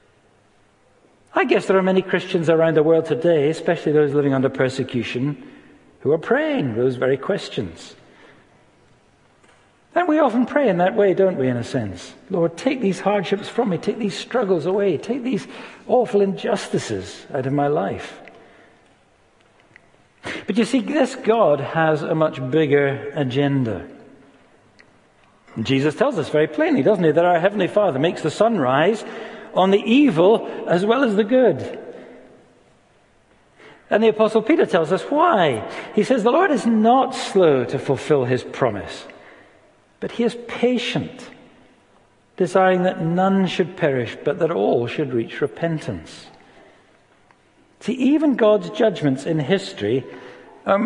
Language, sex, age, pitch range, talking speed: English, male, 60-79, 150-225 Hz, 145 wpm